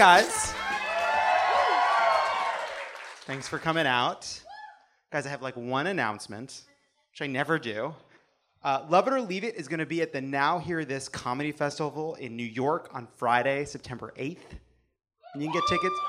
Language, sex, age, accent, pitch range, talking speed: English, male, 30-49, American, 135-195 Hz, 165 wpm